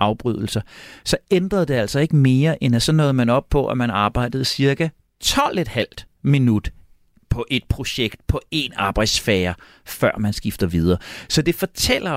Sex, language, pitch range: male, Danish, 120-170 Hz